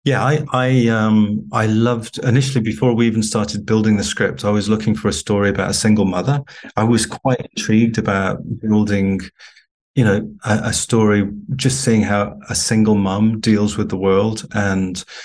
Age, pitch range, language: 30-49, 100-115 Hz, English